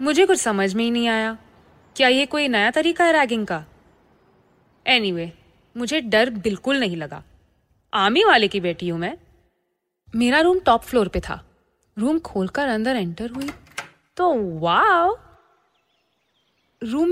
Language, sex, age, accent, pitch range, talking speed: Hindi, female, 20-39, native, 195-305 Hz, 145 wpm